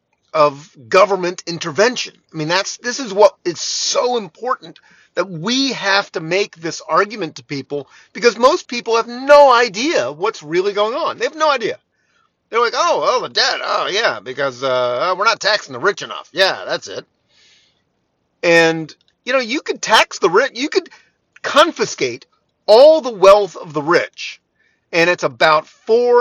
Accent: American